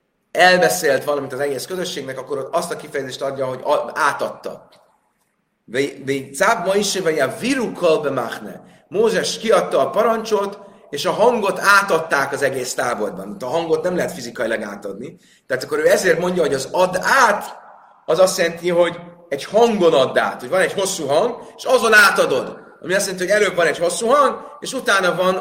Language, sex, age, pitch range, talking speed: Hungarian, male, 30-49, 145-200 Hz, 165 wpm